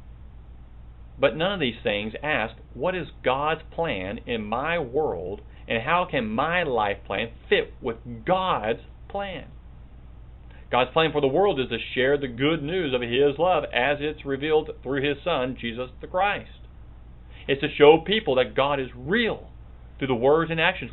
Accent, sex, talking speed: American, male, 170 wpm